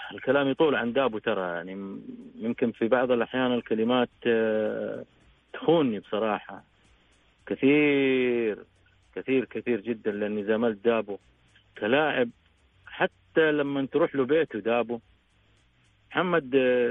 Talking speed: 95 wpm